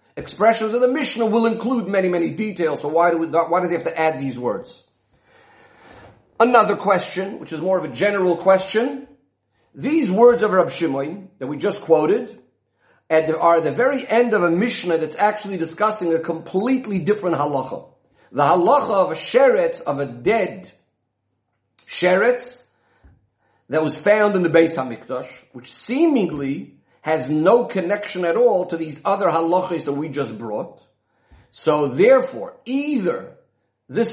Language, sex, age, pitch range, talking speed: English, male, 50-69, 160-225 Hz, 155 wpm